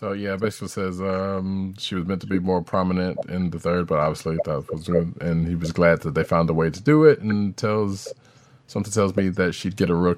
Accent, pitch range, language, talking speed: American, 90-135 Hz, English, 250 wpm